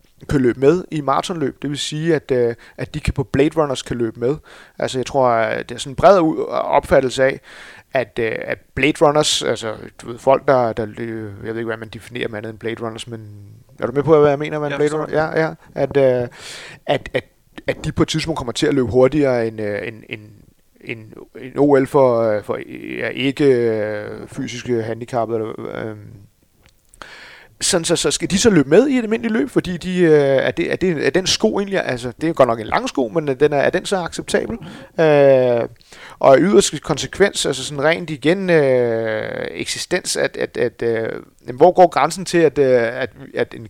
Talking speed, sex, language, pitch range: 215 wpm, male, Danish, 115-155 Hz